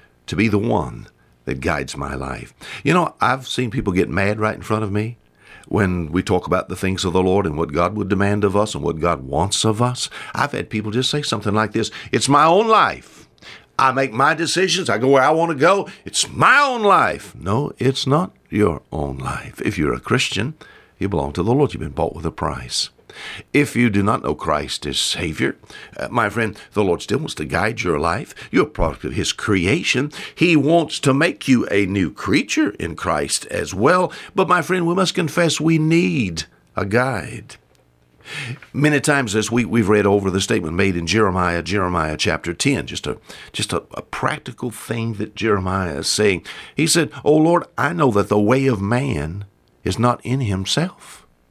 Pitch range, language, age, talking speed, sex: 95-145 Hz, English, 60-79, 205 wpm, male